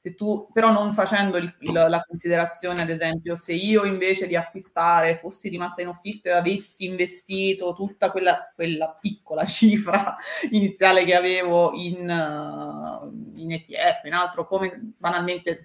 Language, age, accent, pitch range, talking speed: Italian, 30-49, native, 170-195 Hz, 140 wpm